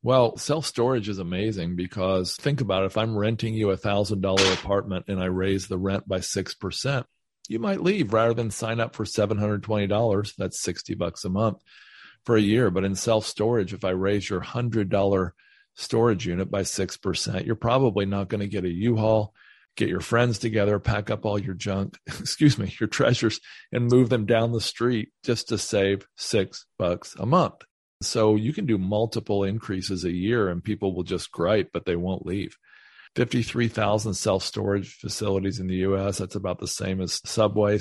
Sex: male